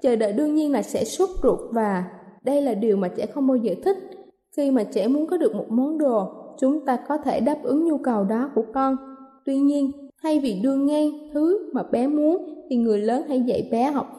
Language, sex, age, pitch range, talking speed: Vietnamese, female, 20-39, 220-285 Hz, 235 wpm